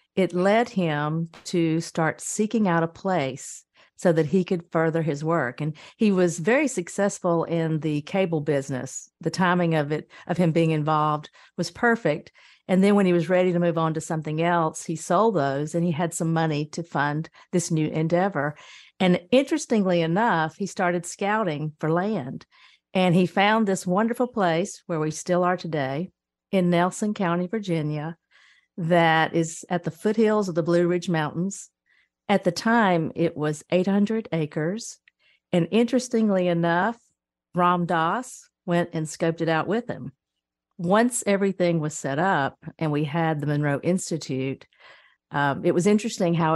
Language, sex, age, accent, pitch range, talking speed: English, female, 50-69, American, 155-190 Hz, 165 wpm